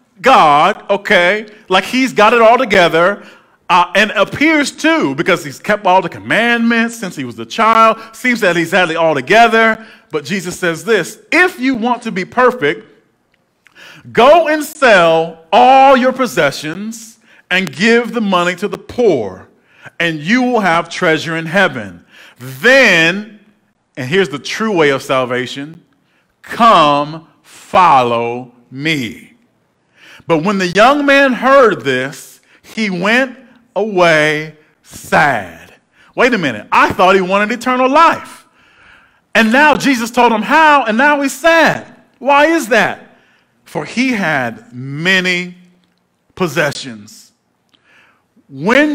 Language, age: English, 40-59